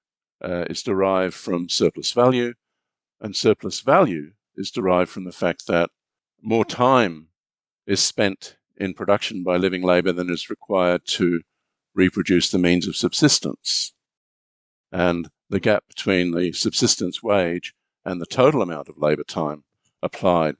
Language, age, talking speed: English, 50-69, 140 wpm